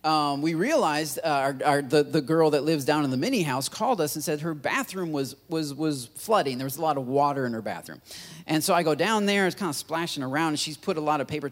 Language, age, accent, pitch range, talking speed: English, 30-49, American, 140-175 Hz, 275 wpm